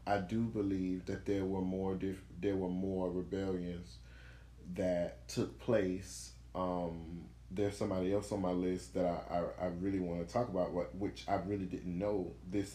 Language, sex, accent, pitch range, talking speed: English, male, American, 90-110 Hz, 180 wpm